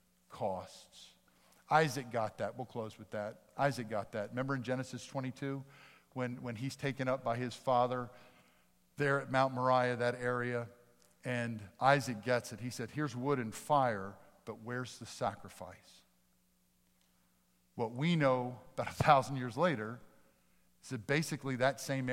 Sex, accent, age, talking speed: male, American, 50-69, 150 wpm